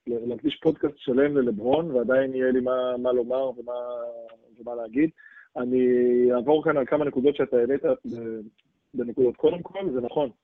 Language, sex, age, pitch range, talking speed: Hebrew, male, 20-39, 115-145 Hz, 150 wpm